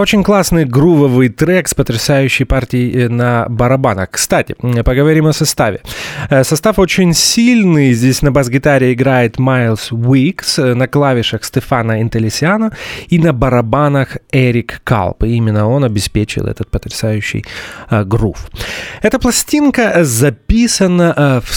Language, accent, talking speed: Russian, native, 115 wpm